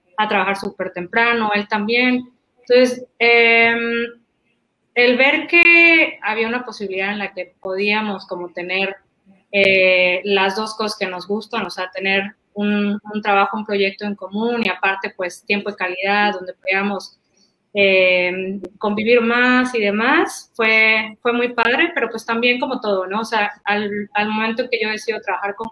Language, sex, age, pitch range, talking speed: Spanish, female, 20-39, 195-245 Hz, 165 wpm